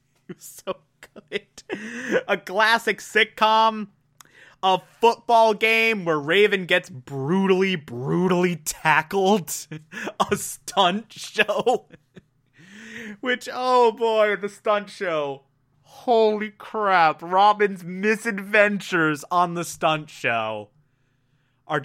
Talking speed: 90 wpm